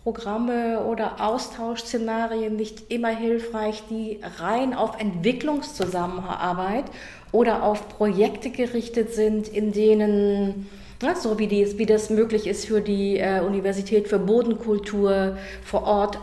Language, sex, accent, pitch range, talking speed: English, female, German, 205-230 Hz, 115 wpm